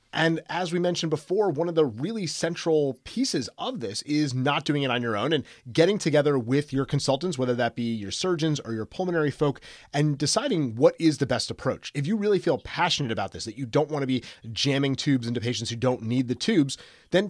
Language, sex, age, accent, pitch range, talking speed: English, male, 30-49, American, 125-155 Hz, 225 wpm